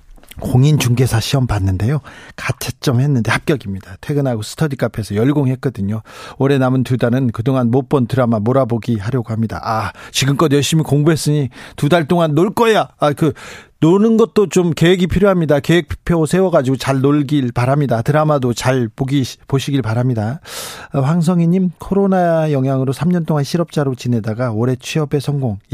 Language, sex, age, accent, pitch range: Korean, male, 40-59, native, 120-155 Hz